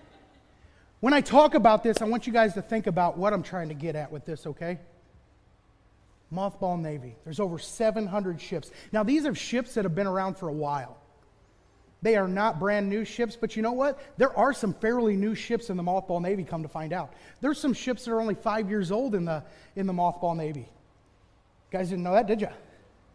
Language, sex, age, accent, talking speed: English, male, 30-49, American, 220 wpm